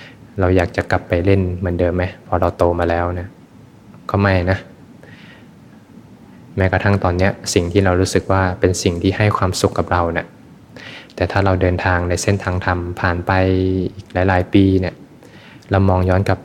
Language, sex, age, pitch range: Thai, male, 20-39, 90-95 Hz